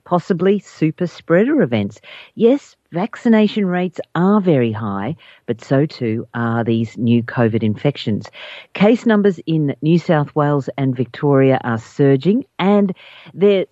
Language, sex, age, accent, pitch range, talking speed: English, female, 50-69, Australian, 130-180 Hz, 130 wpm